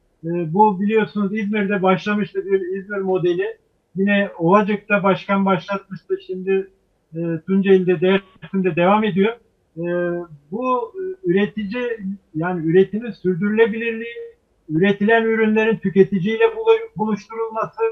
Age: 50-69